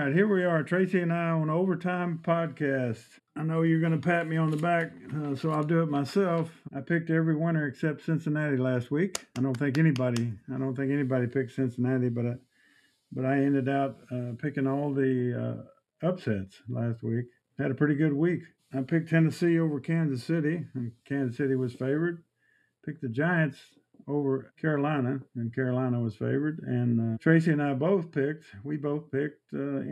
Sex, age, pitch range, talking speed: male, 50-69, 125-155 Hz, 185 wpm